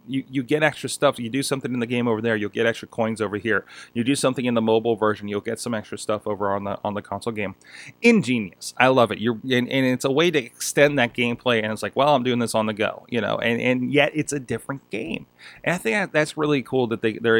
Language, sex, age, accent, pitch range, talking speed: English, male, 20-39, American, 110-135 Hz, 275 wpm